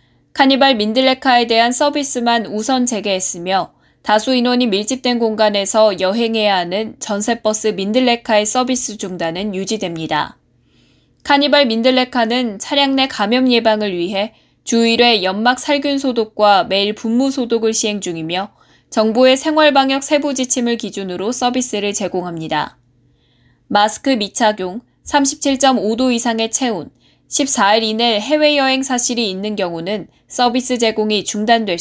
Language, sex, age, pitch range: Korean, female, 10-29, 205-255 Hz